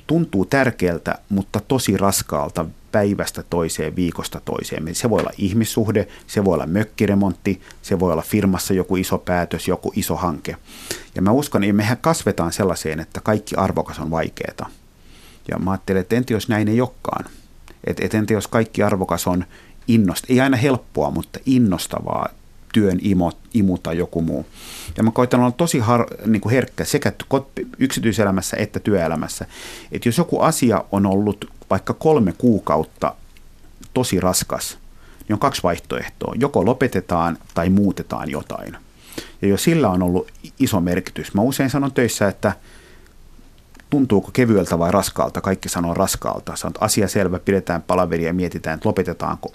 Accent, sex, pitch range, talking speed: native, male, 85-115 Hz, 155 wpm